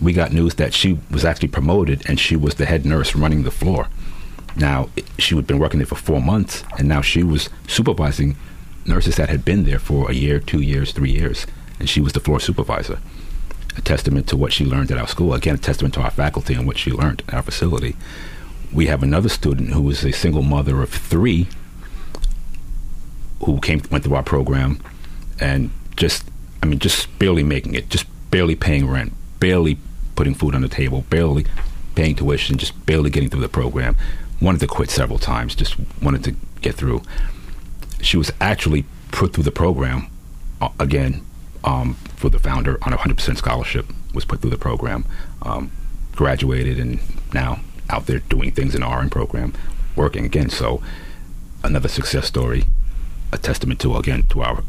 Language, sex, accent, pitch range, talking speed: English, male, American, 65-80 Hz, 190 wpm